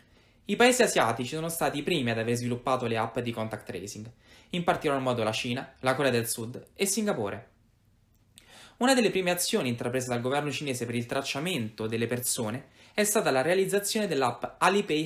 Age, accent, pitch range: 20-39, native, 115-165 Hz